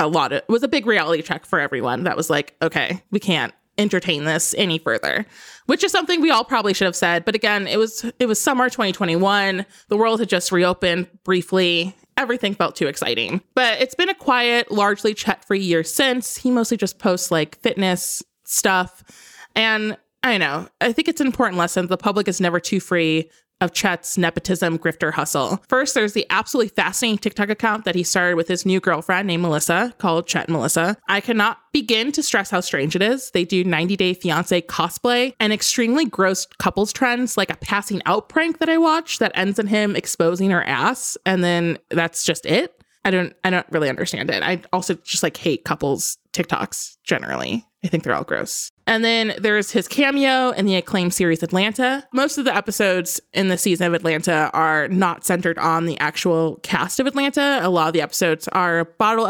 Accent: American